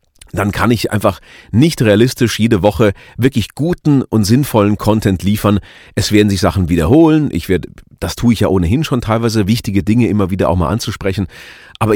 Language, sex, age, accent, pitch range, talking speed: German, male, 40-59, German, 90-115 Hz, 180 wpm